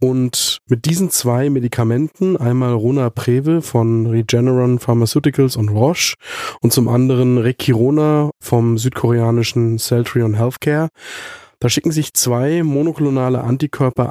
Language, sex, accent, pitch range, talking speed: German, male, German, 115-135 Hz, 115 wpm